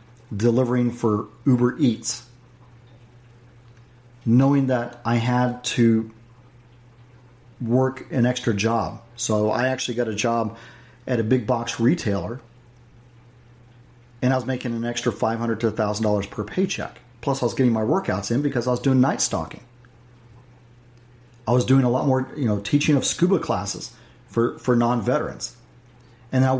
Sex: male